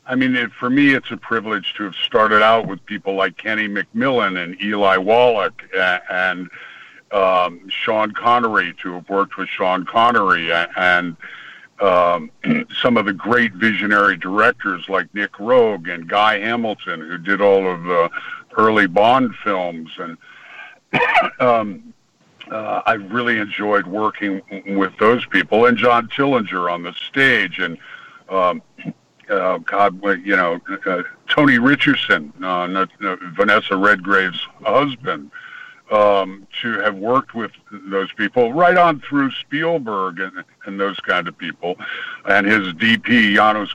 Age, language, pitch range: 50-69, English, 95-135 Hz